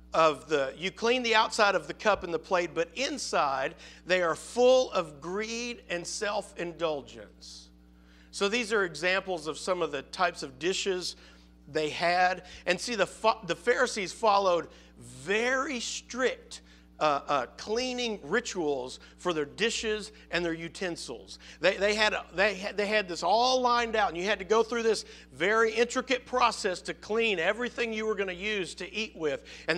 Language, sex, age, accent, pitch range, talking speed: English, male, 50-69, American, 175-240 Hz, 175 wpm